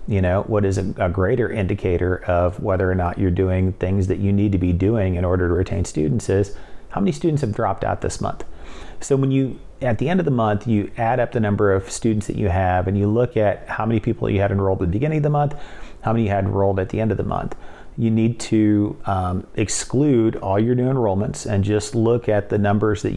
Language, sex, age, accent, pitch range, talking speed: English, male, 30-49, American, 95-115 Hz, 250 wpm